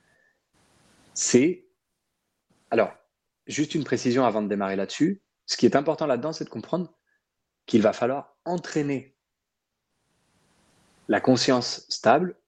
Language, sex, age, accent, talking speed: French, male, 30-49, French, 125 wpm